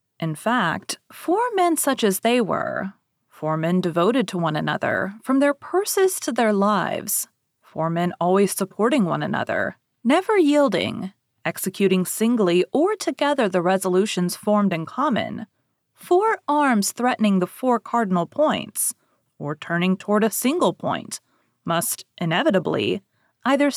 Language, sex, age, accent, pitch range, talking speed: English, female, 30-49, American, 185-290 Hz, 135 wpm